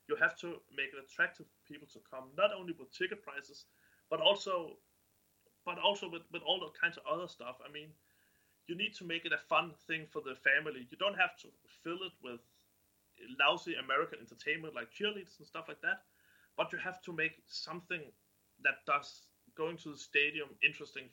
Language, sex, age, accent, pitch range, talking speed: English, male, 30-49, Danish, 120-170 Hz, 195 wpm